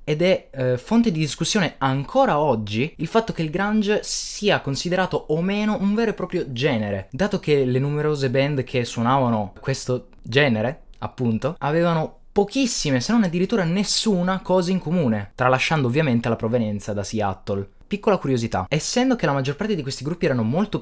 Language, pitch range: Italian, 115-185 Hz